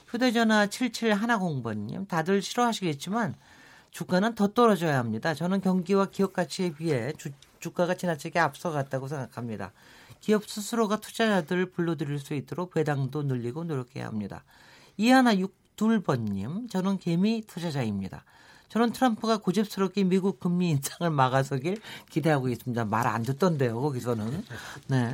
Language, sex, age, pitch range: Korean, male, 40-59, 145-205 Hz